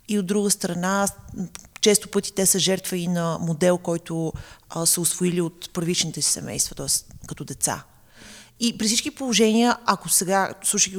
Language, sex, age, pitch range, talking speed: Bulgarian, female, 30-49, 165-200 Hz, 165 wpm